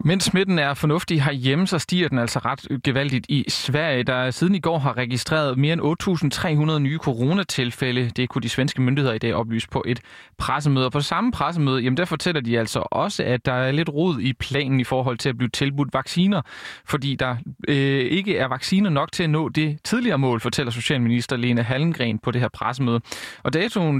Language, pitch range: Danish, 125-160 Hz